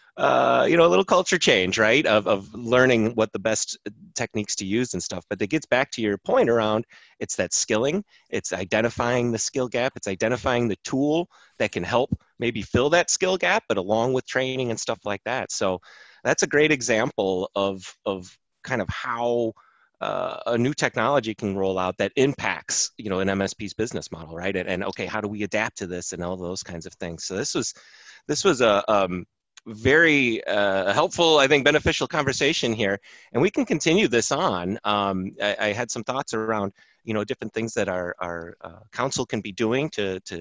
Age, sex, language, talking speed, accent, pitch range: 30-49, male, English, 205 wpm, American, 95-125 Hz